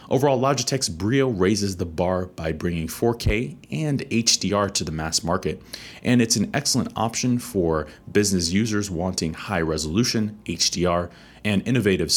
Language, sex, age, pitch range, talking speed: English, male, 30-49, 85-110 Hz, 145 wpm